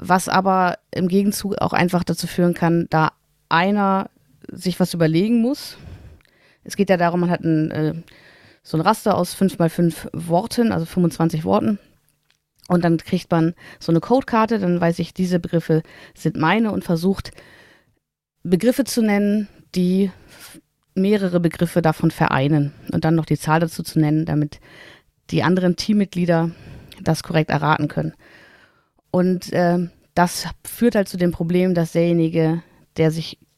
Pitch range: 165-195 Hz